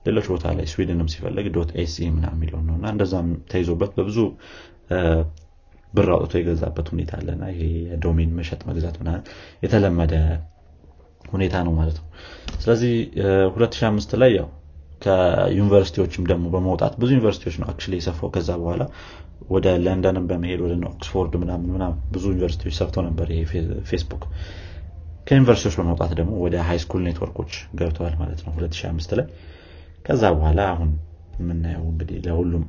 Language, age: Amharic, 30-49